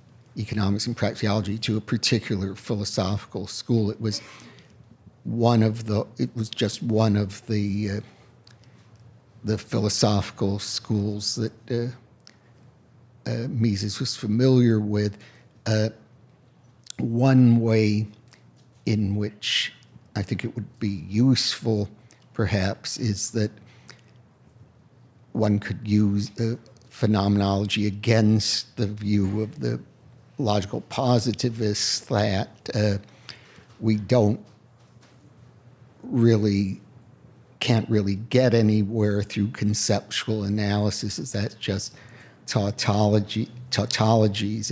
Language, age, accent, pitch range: English, 60-79, American, 105-120 Hz